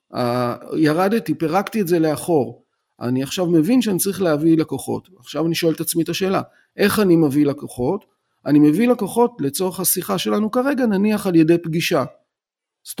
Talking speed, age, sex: 160 wpm, 40-59, male